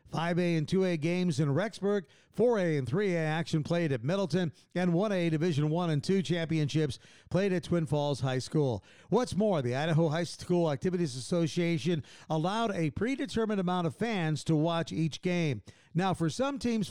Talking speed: 170 wpm